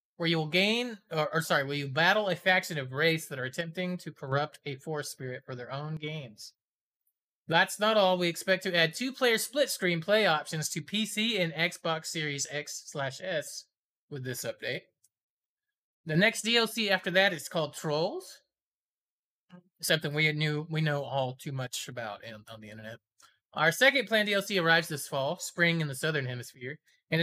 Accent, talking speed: American, 185 wpm